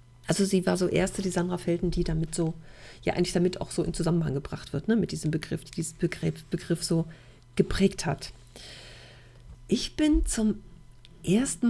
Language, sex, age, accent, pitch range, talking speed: German, female, 40-59, German, 170-210 Hz, 175 wpm